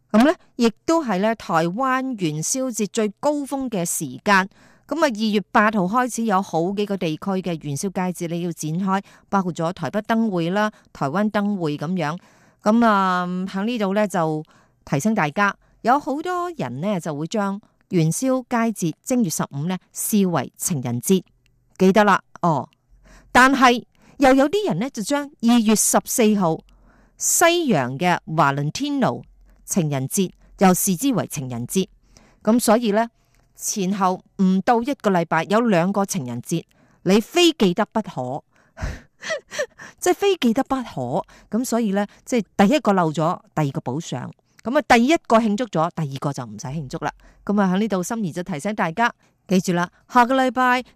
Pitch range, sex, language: 170-235 Hz, female, Chinese